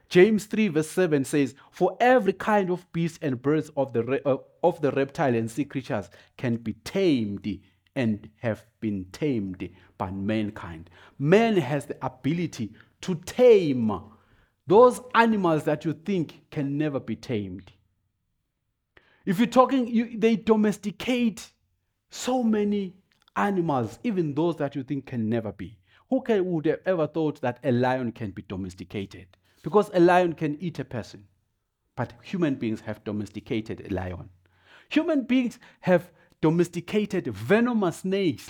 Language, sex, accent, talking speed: English, male, South African, 140 wpm